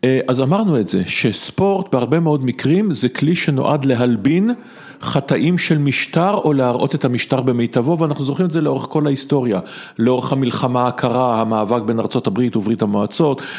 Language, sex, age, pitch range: English, male, 50-69, 120-155 Hz